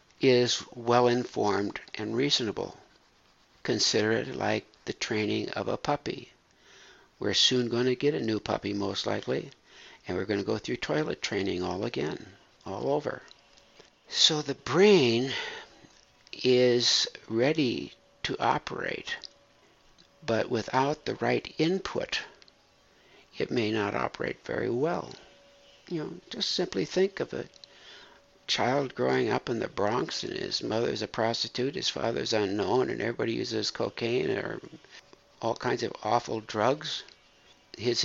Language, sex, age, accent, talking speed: English, male, 60-79, American, 135 wpm